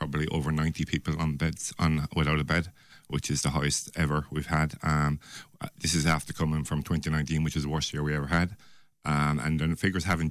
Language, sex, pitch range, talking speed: English, male, 75-85 Hz, 220 wpm